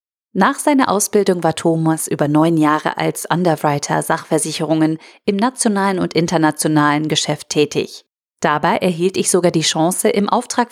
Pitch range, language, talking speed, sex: 155-205 Hz, German, 140 wpm, female